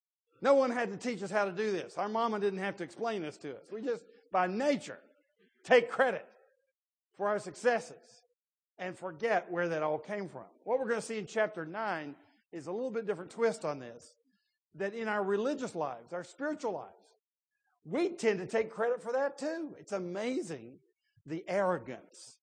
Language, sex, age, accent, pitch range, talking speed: English, male, 50-69, American, 155-225 Hz, 190 wpm